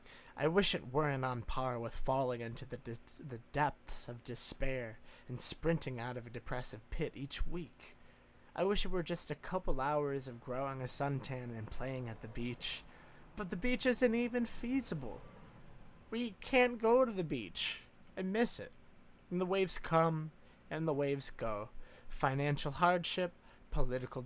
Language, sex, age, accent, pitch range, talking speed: English, male, 20-39, American, 120-160 Hz, 165 wpm